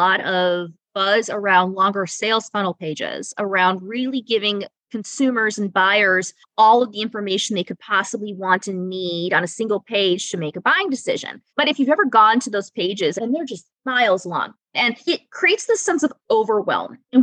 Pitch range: 200-295 Hz